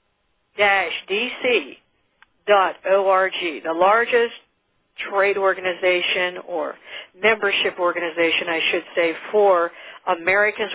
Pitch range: 175-230 Hz